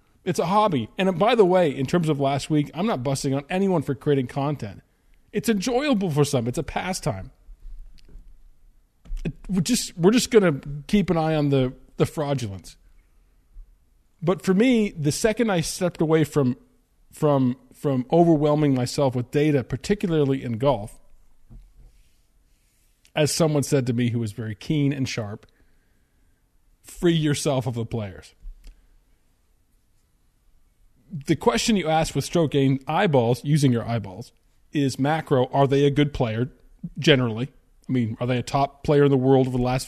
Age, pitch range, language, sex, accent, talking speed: 40-59, 125-155 Hz, English, male, American, 160 wpm